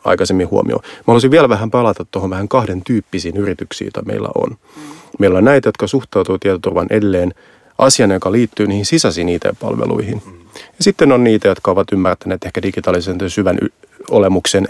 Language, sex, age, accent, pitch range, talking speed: Finnish, male, 30-49, native, 95-110 Hz, 165 wpm